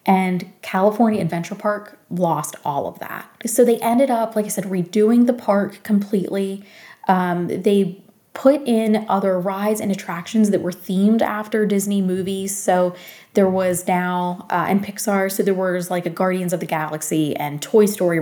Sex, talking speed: female, 170 wpm